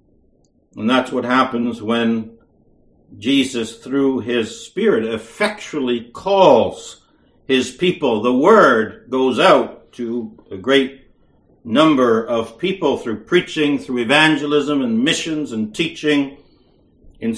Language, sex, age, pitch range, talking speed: English, male, 60-79, 130-170 Hz, 110 wpm